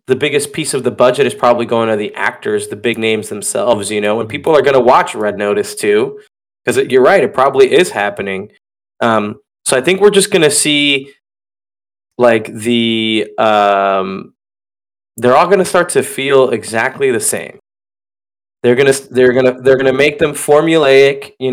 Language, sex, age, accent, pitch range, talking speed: English, male, 20-39, American, 110-135 Hz, 190 wpm